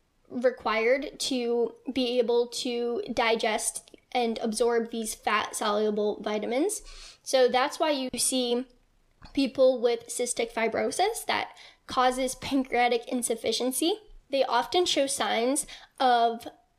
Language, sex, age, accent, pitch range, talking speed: English, female, 10-29, American, 230-270 Hz, 105 wpm